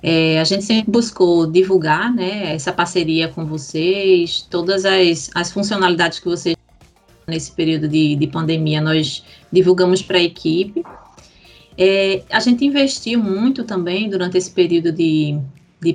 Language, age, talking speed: Portuguese, 20-39, 145 wpm